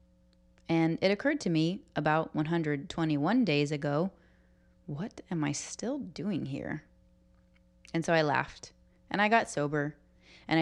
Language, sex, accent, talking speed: English, female, American, 135 wpm